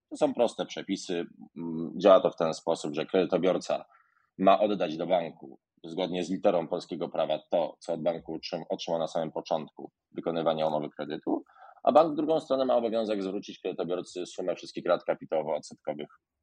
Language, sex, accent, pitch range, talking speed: Polish, male, native, 90-120 Hz, 160 wpm